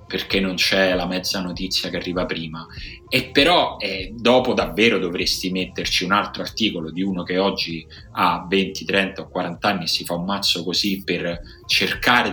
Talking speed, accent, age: 180 wpm, native, 30-49